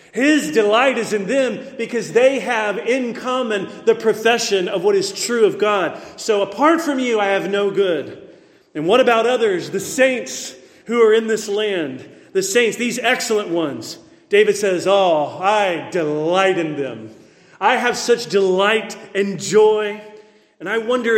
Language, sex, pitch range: English, male, 200-245 Hz